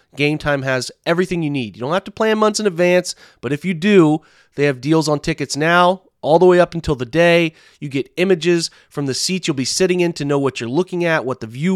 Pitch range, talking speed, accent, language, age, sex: 135-165 Hz, 255 wpm, American, English, 30-49, male